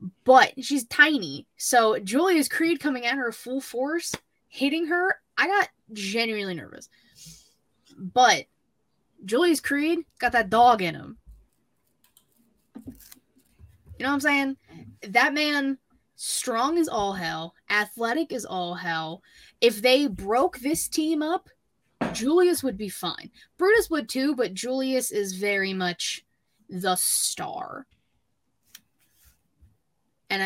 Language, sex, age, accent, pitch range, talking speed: English, female, 20-39, American, 190-295 Hz, 120 wpm